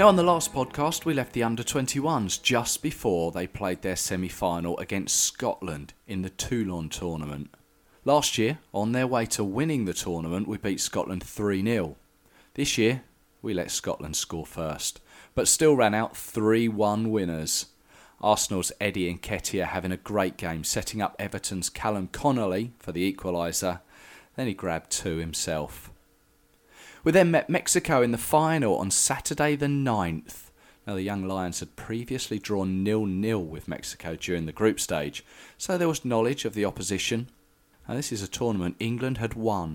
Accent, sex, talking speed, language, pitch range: British, male, 160 wpm, English, 90-120 Hz